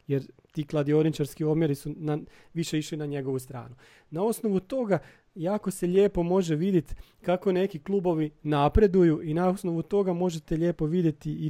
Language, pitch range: Croatian, 145-180 Hz